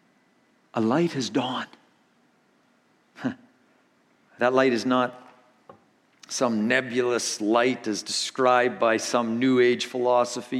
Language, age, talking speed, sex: English, 50-69, 100 wpm, male